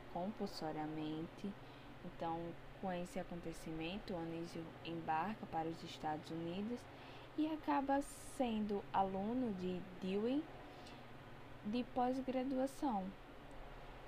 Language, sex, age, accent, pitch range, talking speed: Portuguese, female, 10-29, Brazilian, 145-220 Hz, 85 wpm